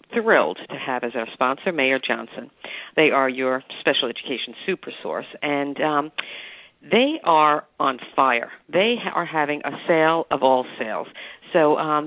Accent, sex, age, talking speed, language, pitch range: American, female, 50-69, 155 wpm, English, 130-175 Hz